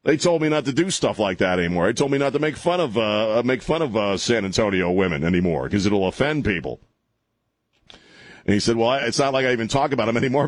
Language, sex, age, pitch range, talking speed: English, male, 40-59, 95-125 Hz, 260 wpm